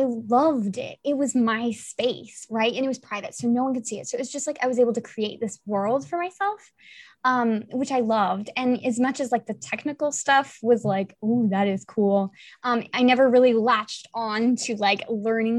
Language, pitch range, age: English, 215-255 Hz, 20-39